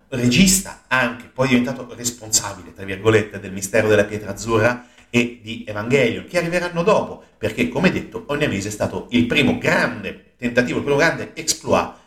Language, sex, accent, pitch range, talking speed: Italian, male, native, 105-125 Hz, 170 wpm